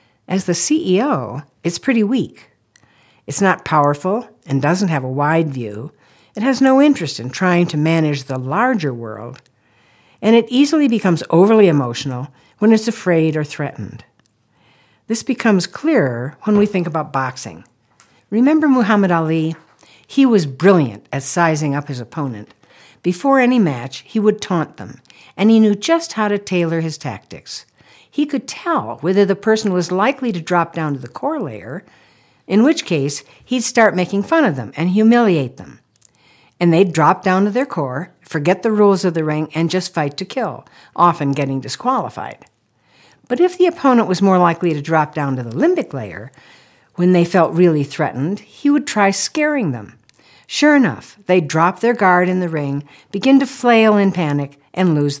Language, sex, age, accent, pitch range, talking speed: English, female, 60-79, American, 140-210 Hz, 175 wpm